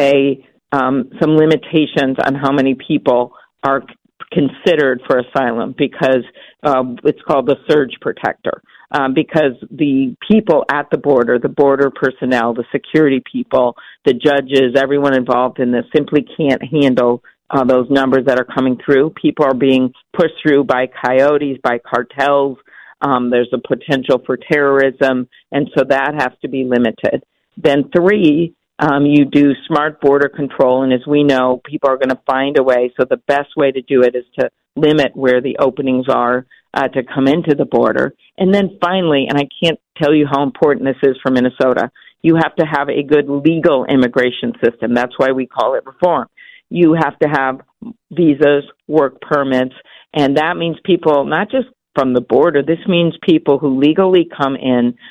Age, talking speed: 50-69, 175 wpm